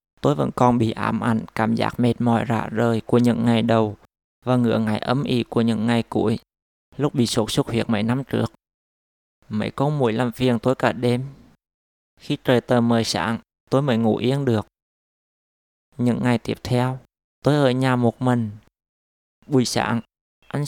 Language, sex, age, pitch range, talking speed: Vietnamese, male, 20-39, 110-130 Hz, 185 wpm